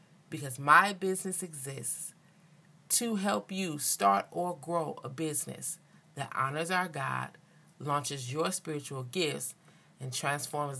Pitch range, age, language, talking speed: 135-170 Hz, 30-49, English, 120 wpm